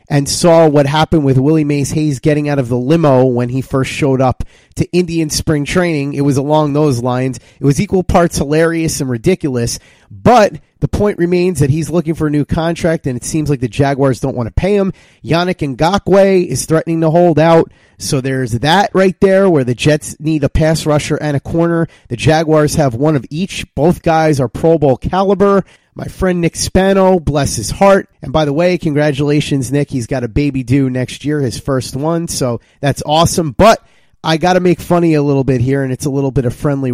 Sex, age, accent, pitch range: male, 30-49, American, 130-165 Hz